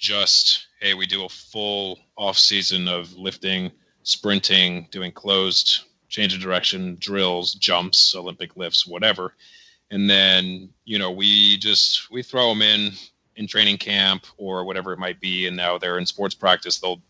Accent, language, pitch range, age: American, English, 90-105 Hz, 30-49